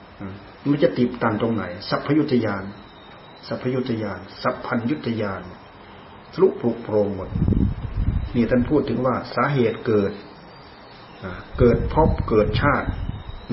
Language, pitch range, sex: Thai, 105-145 Hz, male